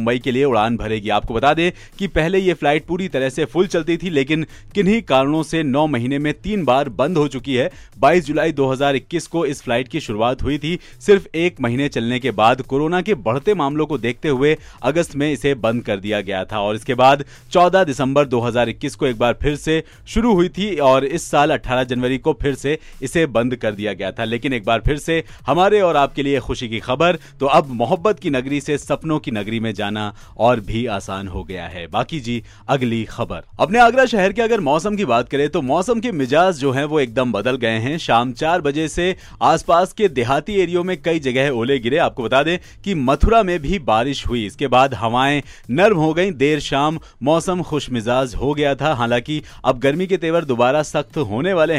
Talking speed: 200 wpm